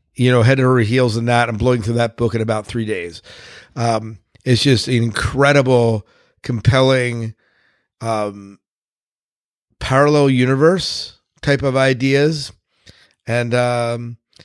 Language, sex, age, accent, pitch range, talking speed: English, male, 50-69, American, 110-130 Hz, 125 wpm